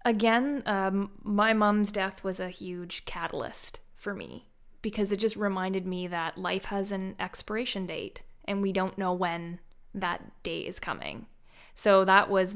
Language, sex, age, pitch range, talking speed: English, female, 20-39, 200-255 Hz, 160 wpm